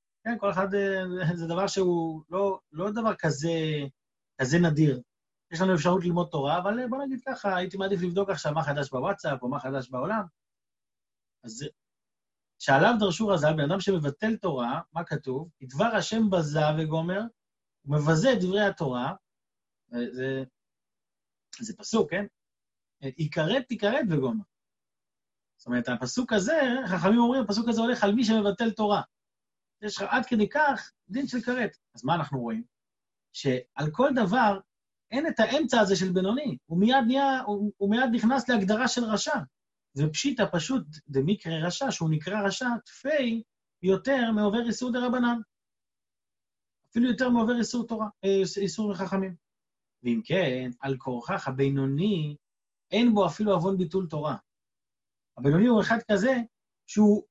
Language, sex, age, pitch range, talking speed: Hebrew, male, 30-49, 150-225 Hz, 140 wpm